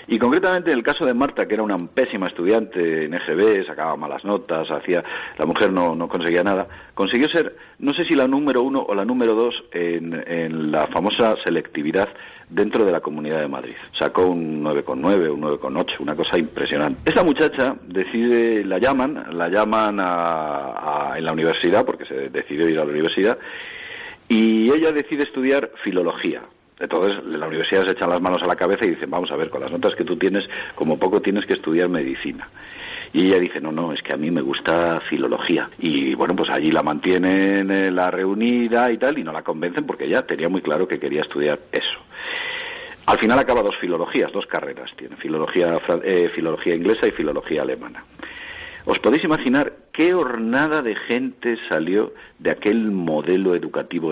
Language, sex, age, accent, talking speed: Spanish, male, 50-69, Spanish, 185 wpm